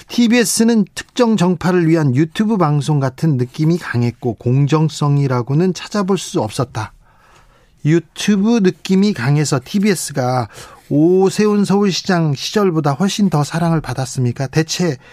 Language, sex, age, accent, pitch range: Korean, male, 40-59, native, 140-195 Hz